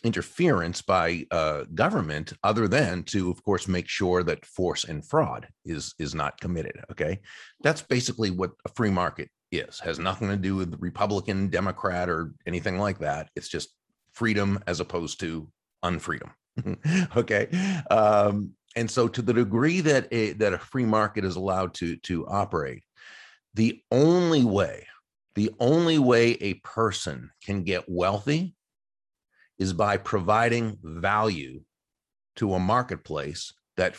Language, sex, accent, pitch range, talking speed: English, male, American, 90-115 Hz, 145 wpm